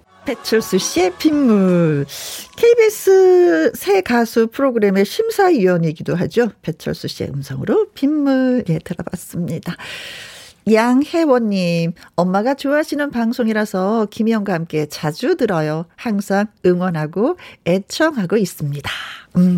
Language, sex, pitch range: Korean, female, 170-240 Hz